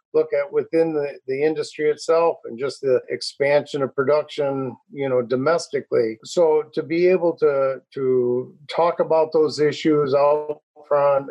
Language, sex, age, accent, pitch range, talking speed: English, male, 50-69, American, 130-155 Hz, 150 wpm